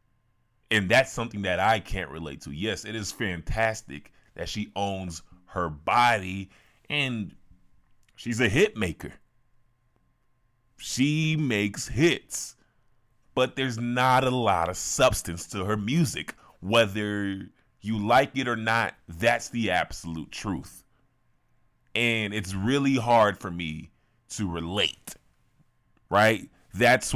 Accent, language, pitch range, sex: American, English, 95-120 Hz, male